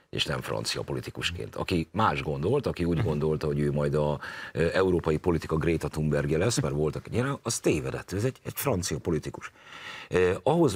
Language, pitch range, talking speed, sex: Hungarian, 75-95 Hz, 175 wpm, male